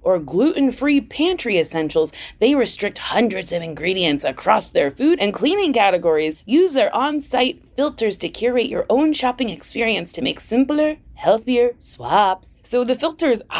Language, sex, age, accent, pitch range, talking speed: English, female, 20-39, American, 210-330 Hz, 145 wpm